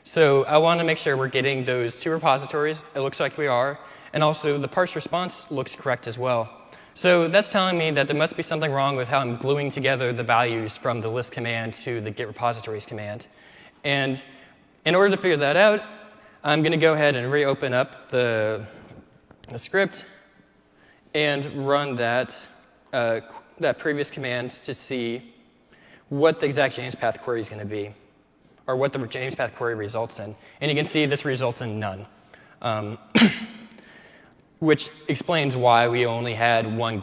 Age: 20-39